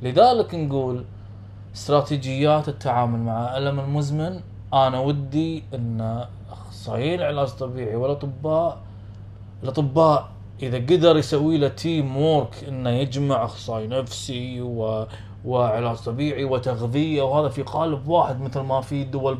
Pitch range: 110-150 Hz